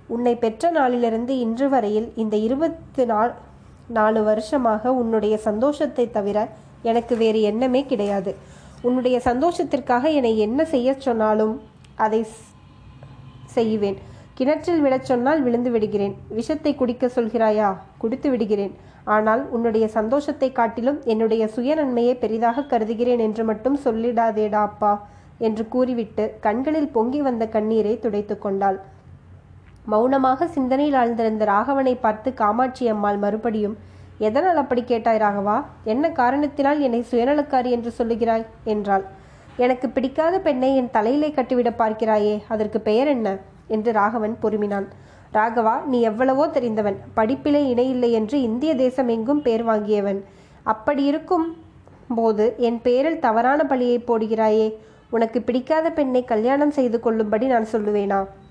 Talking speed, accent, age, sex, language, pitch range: 115 wpm, native, 20-39, female, Tamil, 215-260 Hz